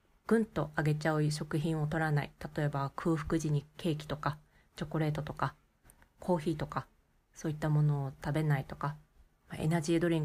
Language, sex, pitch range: Japanese, female, 150-195 Hz